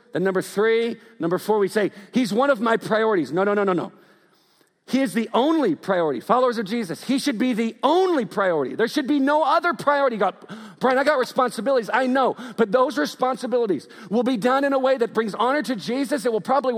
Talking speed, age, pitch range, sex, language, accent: 215 wpm, 50-69, 215-275 Hz, male, English, American